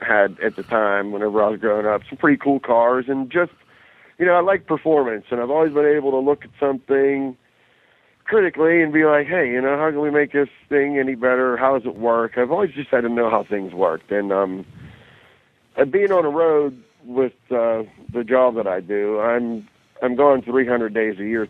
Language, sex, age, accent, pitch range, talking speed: English, male, 50-69, American, 110-145 Hz, 220 wpm